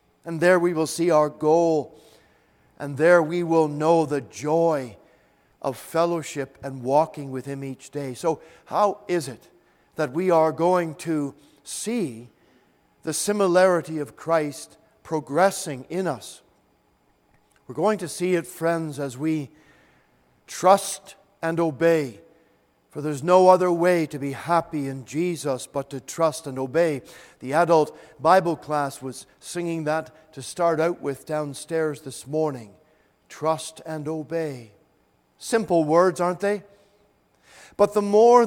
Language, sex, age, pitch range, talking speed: English, male, 50-69, 150-185 Hz, 140 wpm